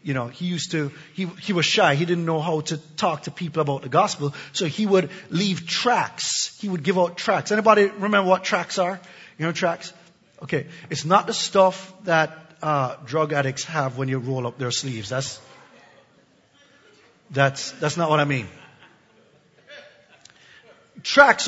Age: 30-49